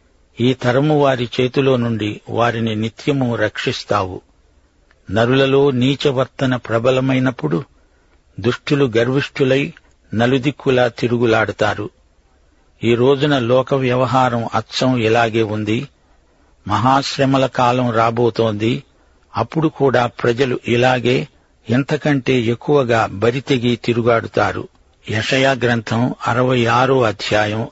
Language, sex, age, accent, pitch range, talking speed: Telugu, male, 60-79, native, 110-130 Hz, 80 wpm